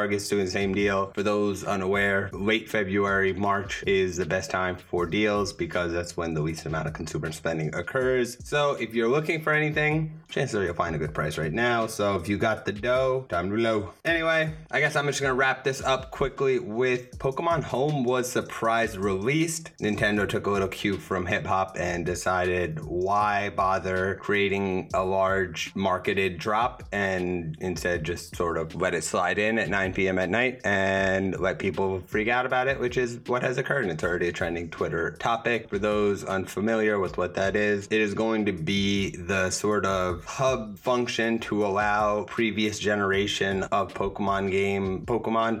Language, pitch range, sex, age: English, 95-115 Hz, male, 20-39